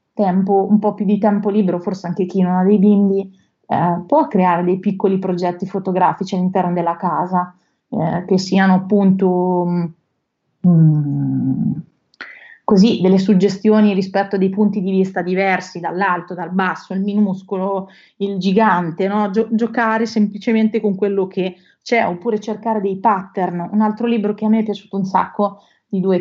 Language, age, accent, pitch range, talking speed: Italian, 30-49, native, 185-210 Hz, 155 wpm